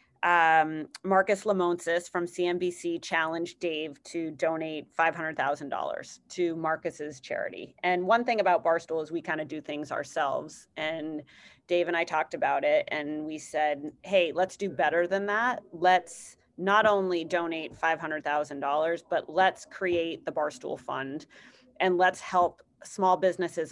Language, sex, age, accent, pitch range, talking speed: English, female, 30-49, American, 160-185 Hz, 145 wpm